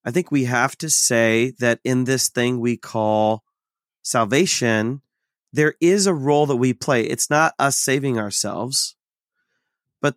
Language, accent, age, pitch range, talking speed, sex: English, American, 30-49, 120-150 Hz, 155 wpm, male